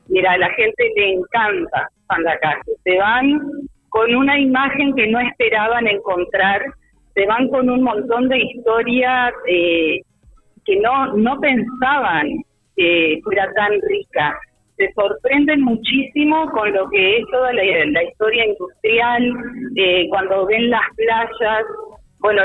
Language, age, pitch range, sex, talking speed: Spanish, 40-59, 200-265 Hz, female, 135 wpm